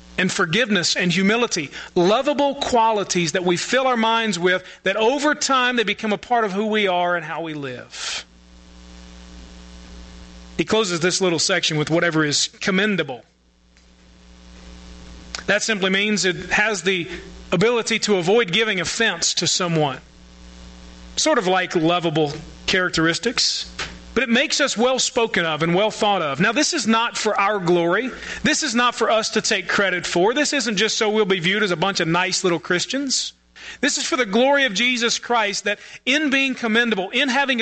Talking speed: 175 wpm